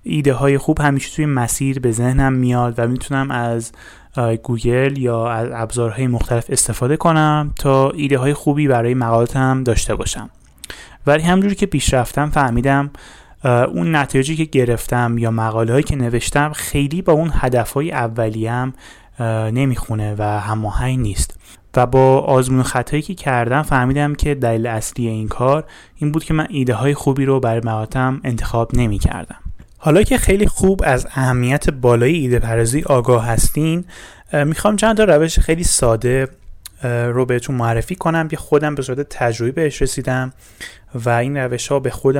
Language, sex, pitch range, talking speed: Persian, male, 115-145 Hz, 160 wpm